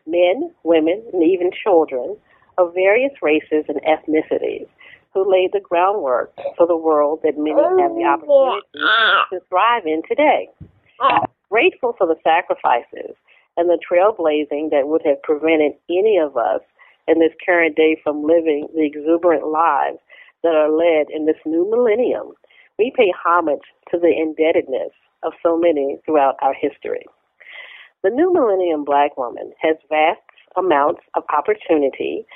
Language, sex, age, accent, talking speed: English, female, 50-69, American, 145 wpm